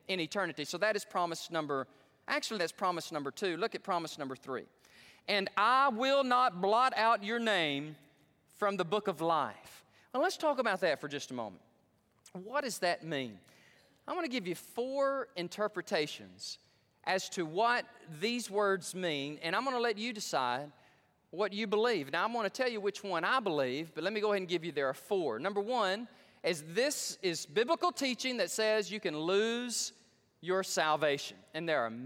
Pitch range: 165-255 Hz